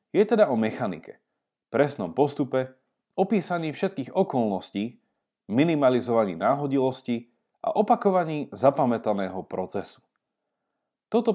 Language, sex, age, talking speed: Slovak, male, 40-59, 85 wpm